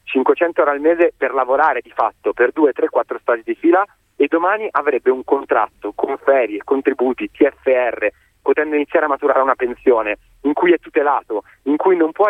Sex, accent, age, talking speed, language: male, native, 30-49, 175 wpm, Italian